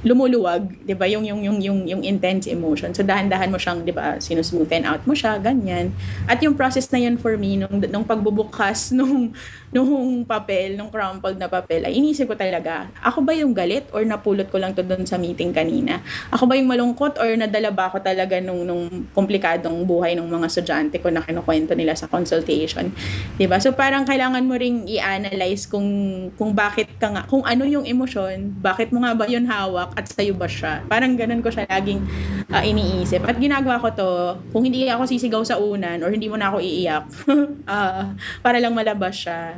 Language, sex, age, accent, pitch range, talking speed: Filipino, female, 20-39, native, 185-240 Hz, 200 wpm